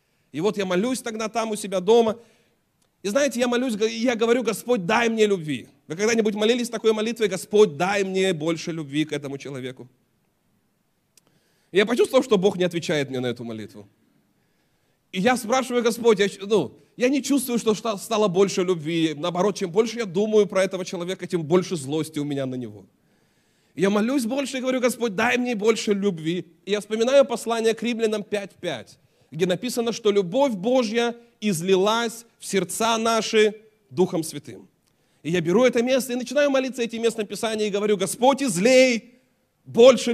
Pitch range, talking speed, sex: 185-235 Hz, 175 wpm, male